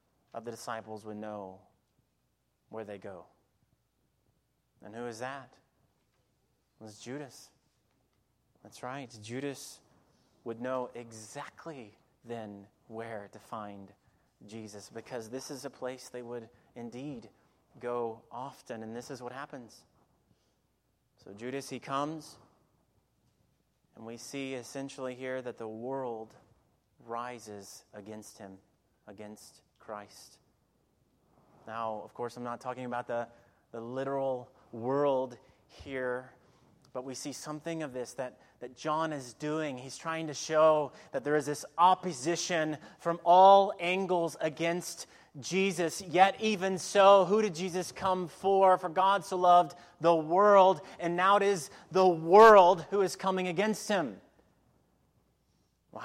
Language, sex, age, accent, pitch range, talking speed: English, male, 30-49, American, 115-170 Hz, 130 wpm